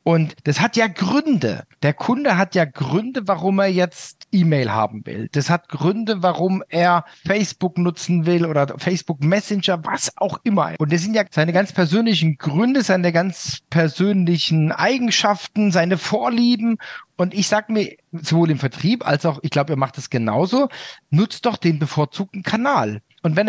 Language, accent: German, German